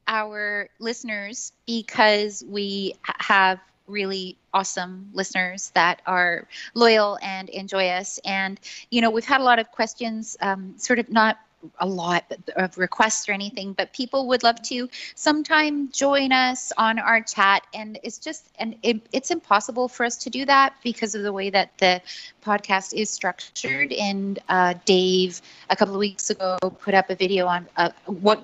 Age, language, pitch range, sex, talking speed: 30-49, English, 185-235 Hz, female, 165 wpm